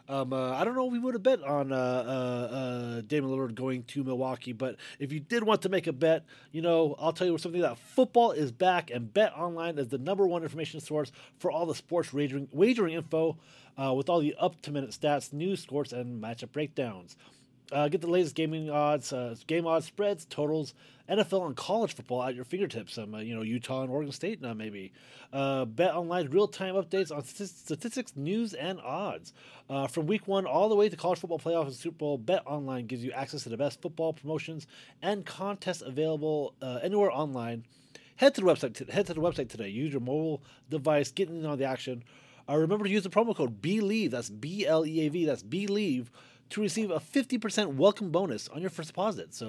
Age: 30-49